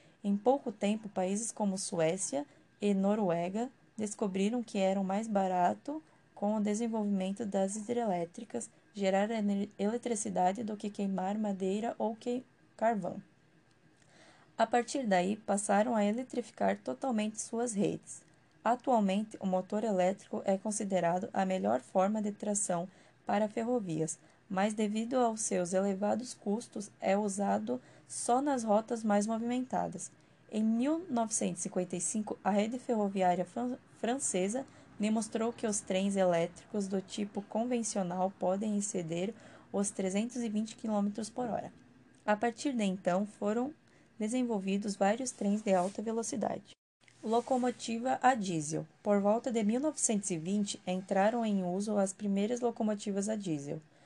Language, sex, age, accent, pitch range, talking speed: Portuguese, female, 10-29, Brazilian, 190-230 Hz, 120 wpm